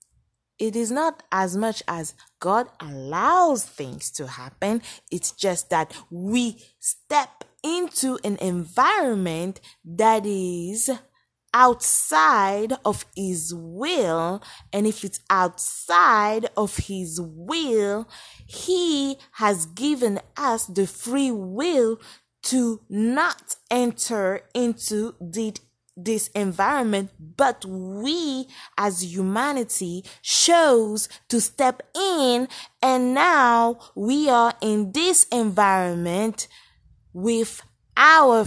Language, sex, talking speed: English, female, 100 wpm